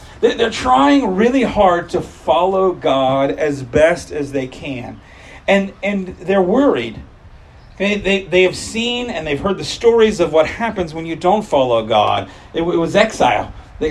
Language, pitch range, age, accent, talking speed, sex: English, 135-185 Hz, 40-59, American, 175 wpm, male